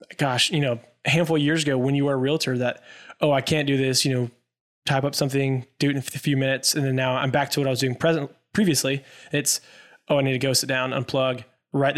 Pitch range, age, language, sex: 130-155 Hz, 20-39, English, male